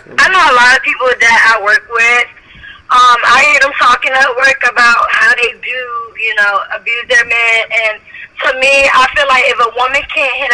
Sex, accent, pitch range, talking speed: female, American, 230-275 Hz, 210 wpm